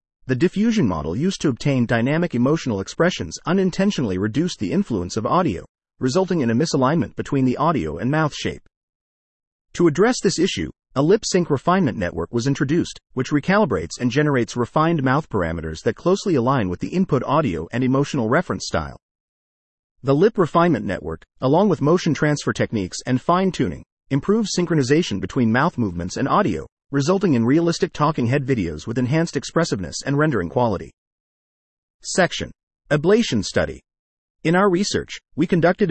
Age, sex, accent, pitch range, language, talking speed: 40-59, male, American, 110-170 Hz, English, 155 wpm